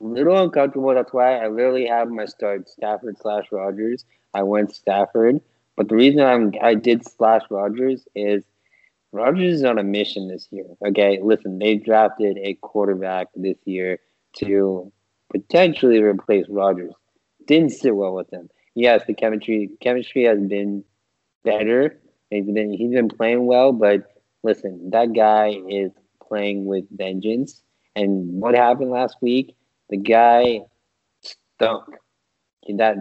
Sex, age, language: male, 20-39, English